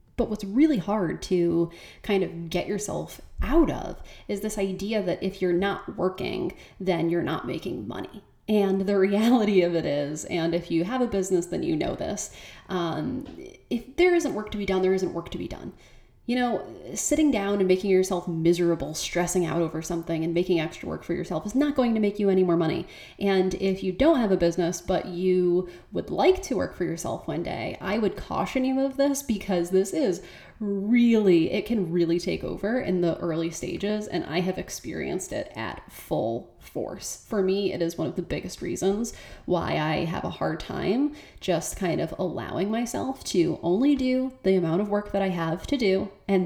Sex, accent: female, American